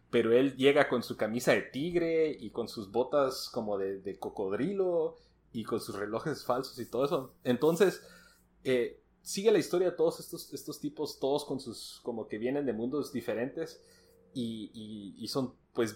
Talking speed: 180 wpm